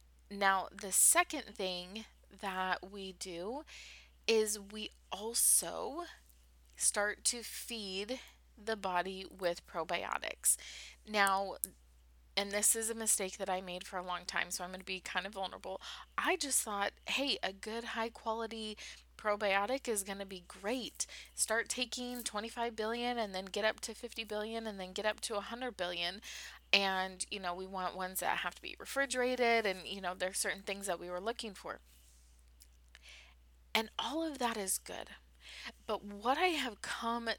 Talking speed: 165 wpm